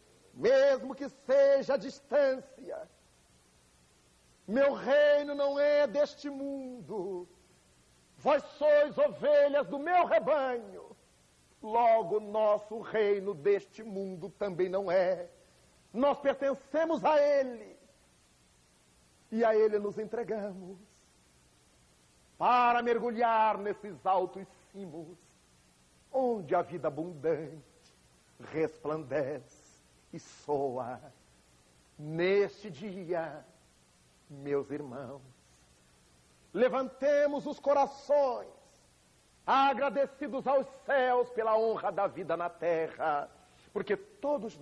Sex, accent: male, Brazilian